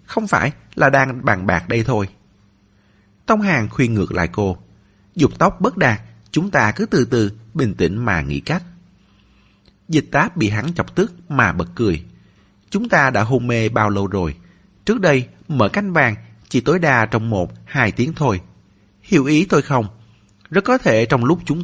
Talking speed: 190 wpm